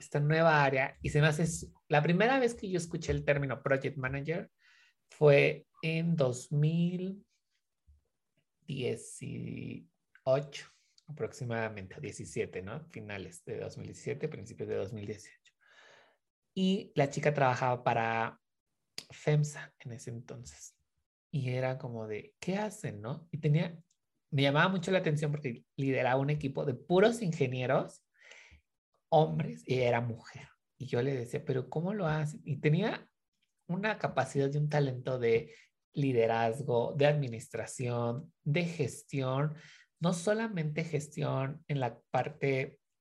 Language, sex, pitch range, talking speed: Spanish, male, 130-160 Hz, 125 wpm